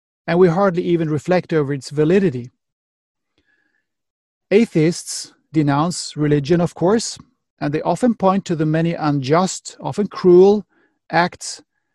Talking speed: 120 wpm